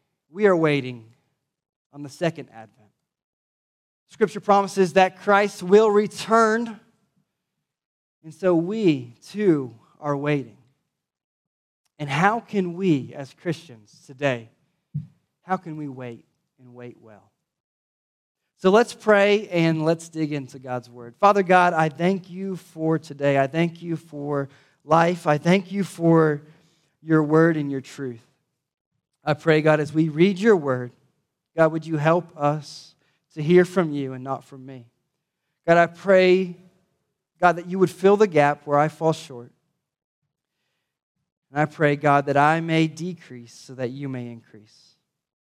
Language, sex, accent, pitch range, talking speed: English, male, American, 135-170 Hz, 145 wpm